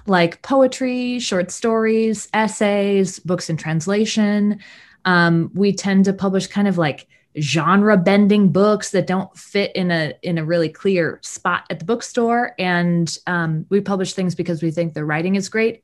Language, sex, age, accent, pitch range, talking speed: English, female, 20-39, American, 160-200 Hz, 165 wpm